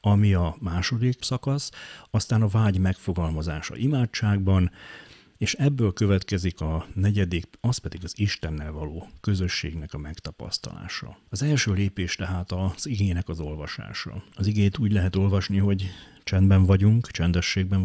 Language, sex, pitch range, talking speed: Hungarian, male, 85-110 Hz, 130 wpm